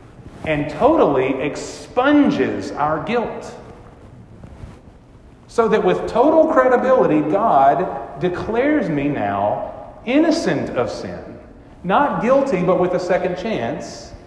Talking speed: 100 wpm